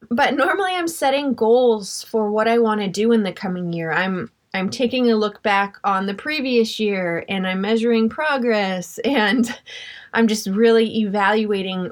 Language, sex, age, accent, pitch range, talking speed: English, female, 20-39, American, 200-240 Hz, 170 wpm